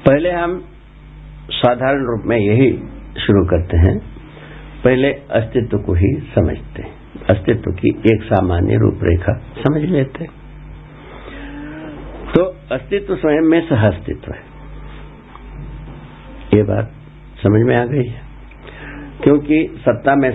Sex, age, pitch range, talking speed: male, 60-79, 100-140 Hz, 115 wpm